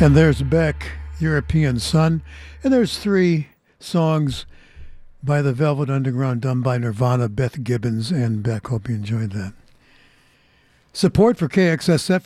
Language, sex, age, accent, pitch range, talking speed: English, male, 60-79, American, 125-165 Hz, 130 wpm